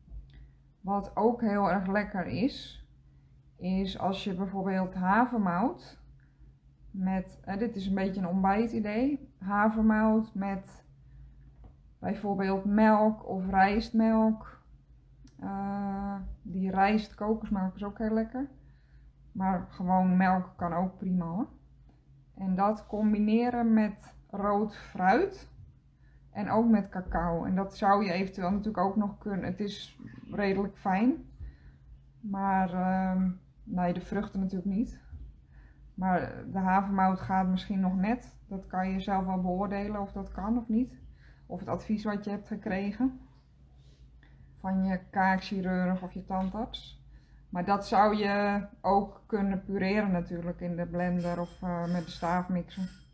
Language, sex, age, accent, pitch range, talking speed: Dutch, female, 20-39, Dutch, 180-205 Hz, 130 wpm